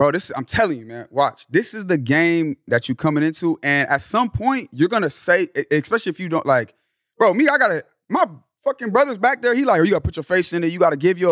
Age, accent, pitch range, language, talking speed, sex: 30-49, American, 155-230 Hz, English, 285 wpm, male